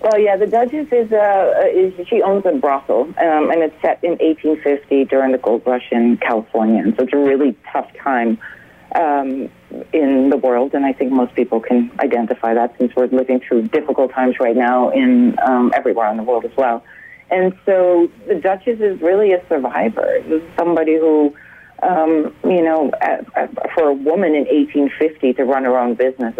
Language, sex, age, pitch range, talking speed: English, female, 40-59, 125-160 Hz, 190 wpm